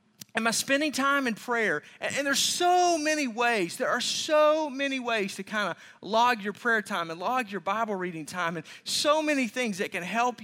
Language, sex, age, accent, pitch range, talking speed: English, male, 30-49, American, 200-255 Hz, 205 wpm